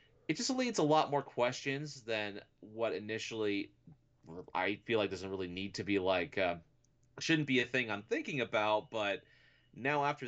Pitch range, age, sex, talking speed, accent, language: 100-130 Hz, 30-49, male, 175 wpm, American, English